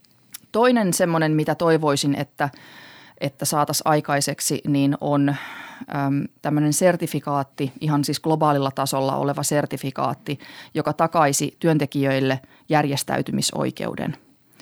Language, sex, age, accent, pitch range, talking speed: Finnish, female, 30-49, native, 140-150 Hz, 95 wpm